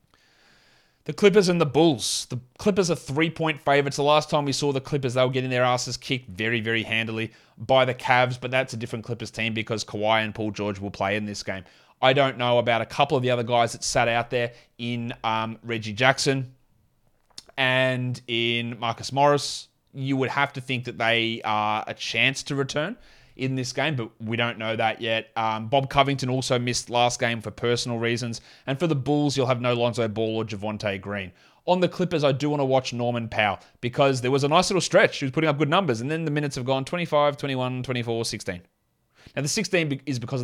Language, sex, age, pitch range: English, male, 20-39, 115-140 Hz